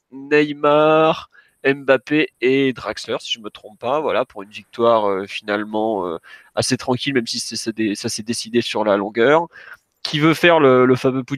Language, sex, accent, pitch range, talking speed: French, male, French, 115-135 Hz, 195 wpm